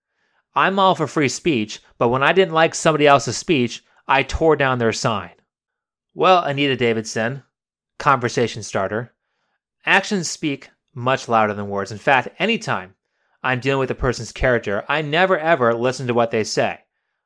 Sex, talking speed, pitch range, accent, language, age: male, 160 wpm, 125-175 Hz, American, English, 30-49